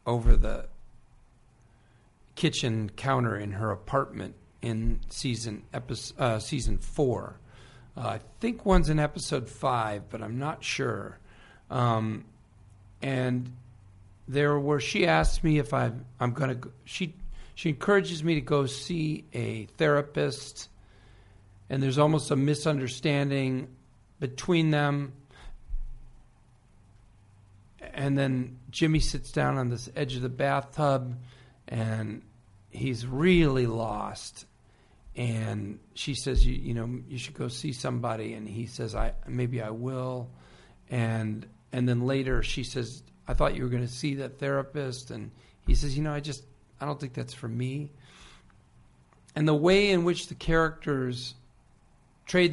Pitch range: 110-140 Hz